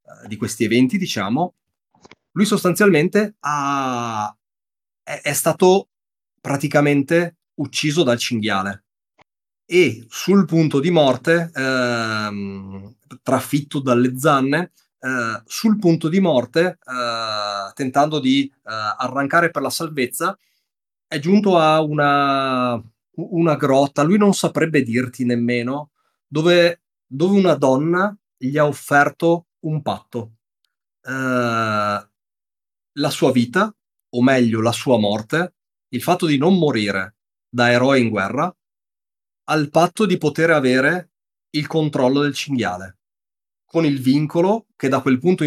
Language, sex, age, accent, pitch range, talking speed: Italian, male, 30-49, native, 115-165 Hz, 115 wpm